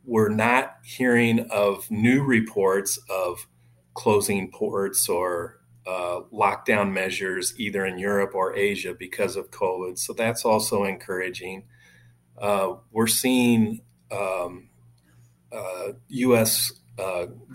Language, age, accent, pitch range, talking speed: English, 40-59, American, 90-115 Hz, 110 wpm